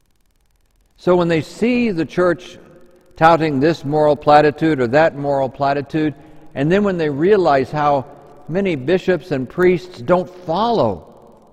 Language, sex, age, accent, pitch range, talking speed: English, male, 60-79, American, 105-160 Hz, 135 wpm